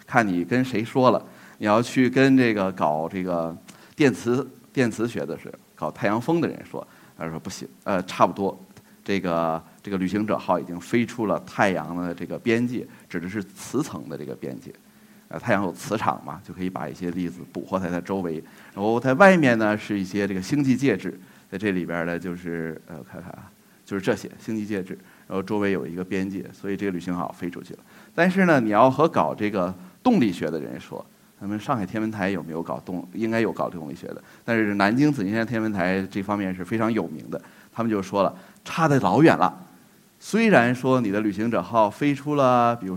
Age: 30-49